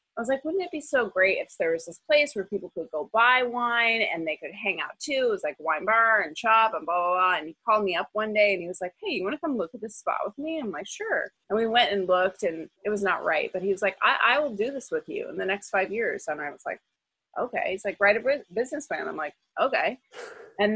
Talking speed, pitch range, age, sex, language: 295 wpm, 170-230 Hz, 30-49, female, English